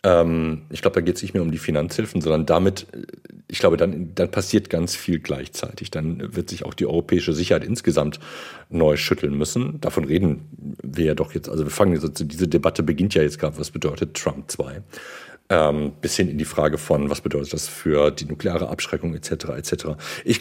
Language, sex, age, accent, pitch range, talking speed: German, male, 40-59, German, 80-95 Hz, 200 wpm